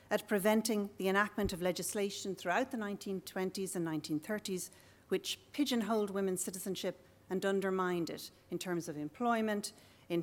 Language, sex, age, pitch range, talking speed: English, female, 40-59, 175-225 Hz, 135 wpm